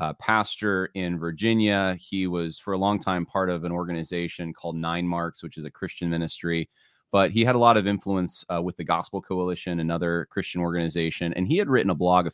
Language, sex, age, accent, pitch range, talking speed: English, male, 30-49, American, 85-100 Hz, 215 wpm